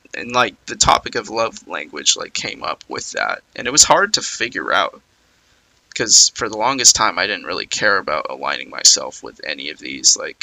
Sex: male